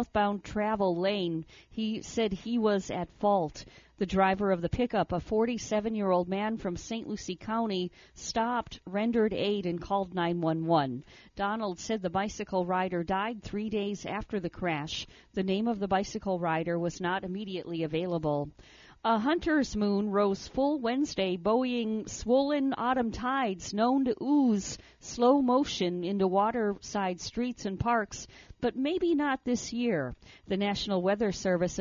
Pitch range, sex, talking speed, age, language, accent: 180-220 Hz, female, 145 wpm, 40-59, English, American